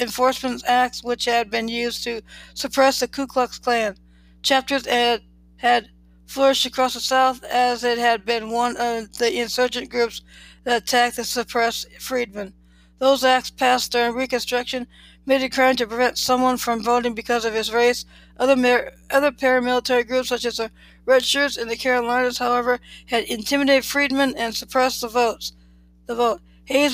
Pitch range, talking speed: 230-255 Hz, 165 wpm